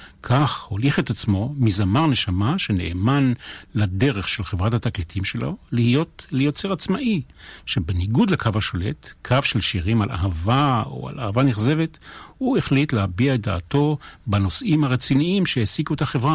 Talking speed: 135 wpm